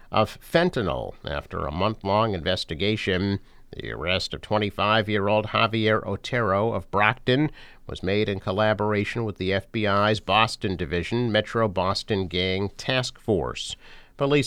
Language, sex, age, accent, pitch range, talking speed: English, male, 50-69, American, 95-125 Hz, 135 wpm